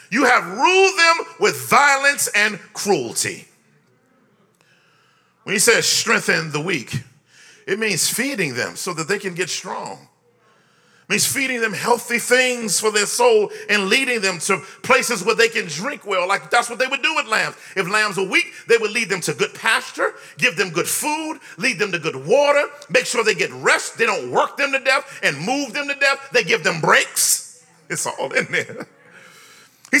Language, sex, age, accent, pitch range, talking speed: English, male, 40-59, American, 215-275 Hz, 190 wpm